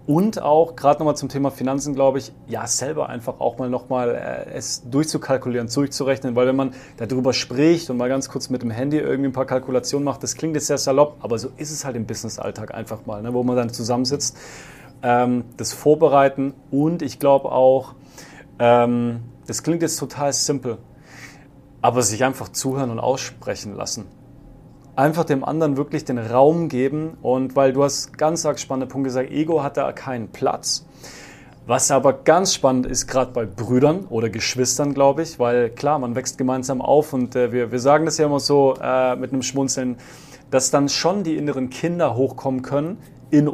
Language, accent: German, German